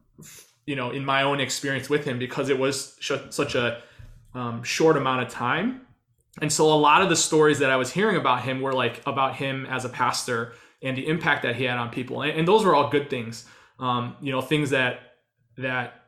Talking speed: 220 wpm